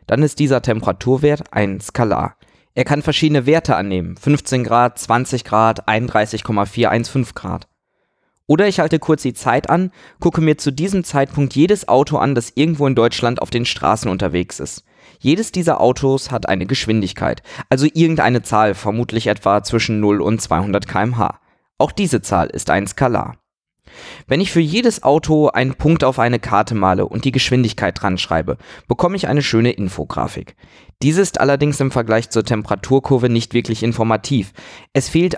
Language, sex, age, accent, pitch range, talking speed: German, male, 20-39, German, 110-145 Hz, 160 wpm